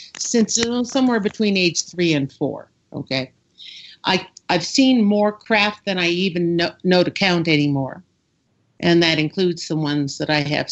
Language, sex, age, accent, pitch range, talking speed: English, female, 50-69, American, 155-200 Hz, 160 wpm